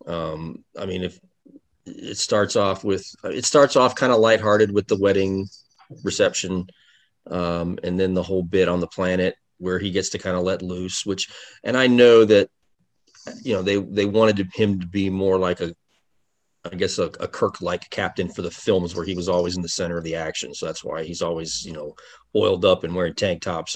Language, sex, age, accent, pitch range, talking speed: English, male, 30-49, American, 90-105 Hz, 210 wpm